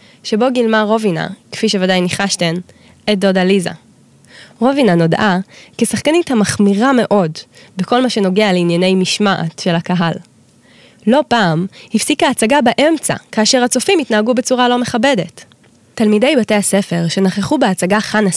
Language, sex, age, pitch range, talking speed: Hebrew, female, 20-39, 185-245 Hz, 125 wpm